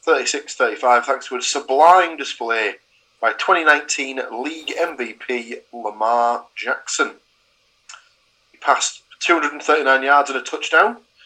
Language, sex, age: English, male, 30-49